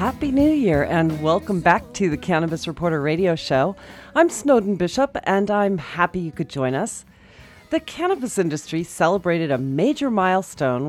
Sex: female